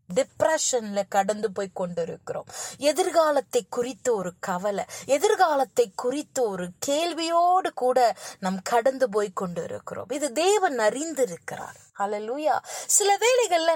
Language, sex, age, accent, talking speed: Tamil, female, 20-39, native, 85 wpm